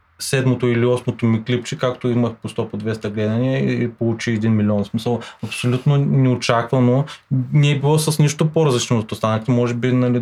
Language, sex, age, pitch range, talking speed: Bulgarian, male, 20-39, 105-135 Hz, 175 wpm